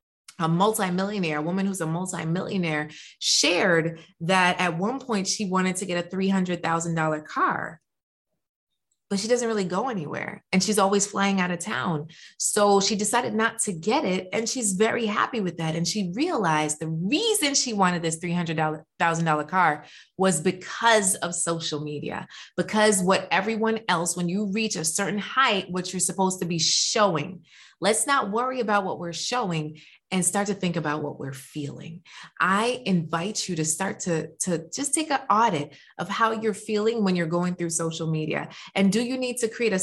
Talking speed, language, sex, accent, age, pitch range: 180 wpm, English, female, American, 20-39, 170-215 Hz